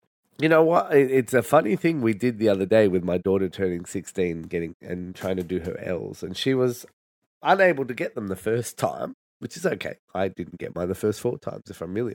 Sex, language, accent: male, English, Australian